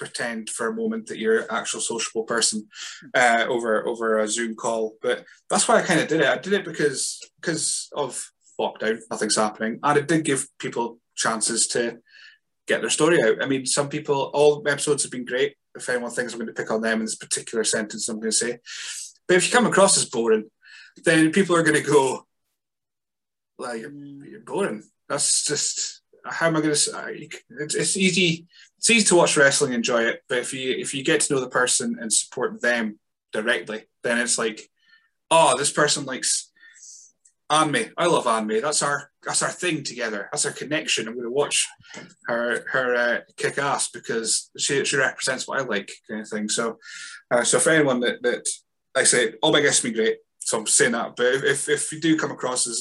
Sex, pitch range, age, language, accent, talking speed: male, 115-190 Hz, 20-39, English, British, 210 wpm